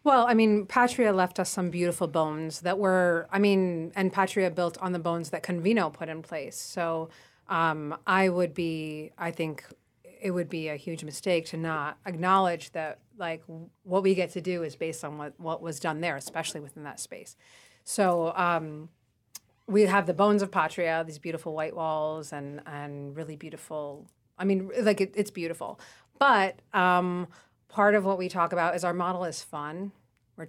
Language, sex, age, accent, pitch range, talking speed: English, female, 30-49, American, 160-190 Hz, 185 wpm